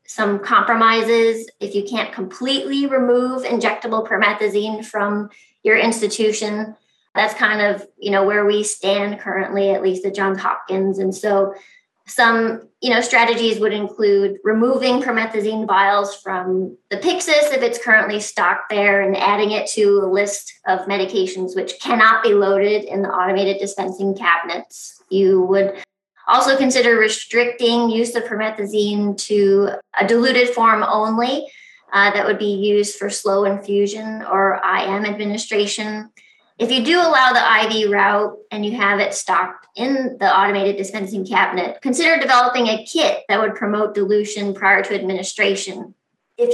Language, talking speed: English, 150 wpm